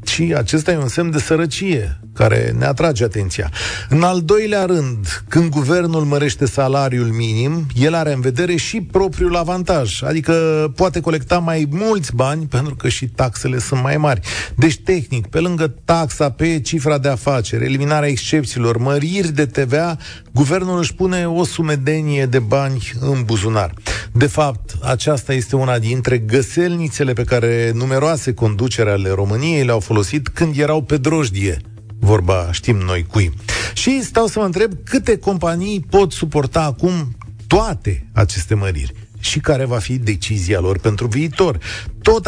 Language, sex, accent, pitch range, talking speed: Romanian, male, native, 115-165 Hz, 150 wpm